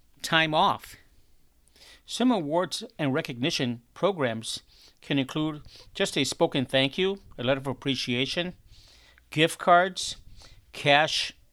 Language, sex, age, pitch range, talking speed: English, male, 50-69, 110-175 Hz, 110 wpm